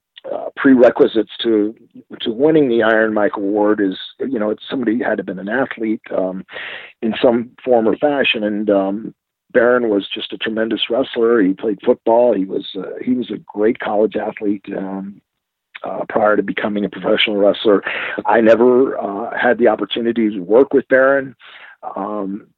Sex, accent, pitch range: male, American, 100-130 Hz